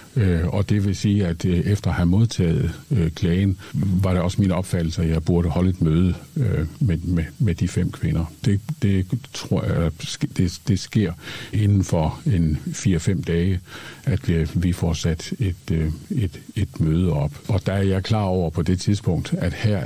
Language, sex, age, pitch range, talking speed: Danish, male, 60-79, 85-105 Hz, 195 wpm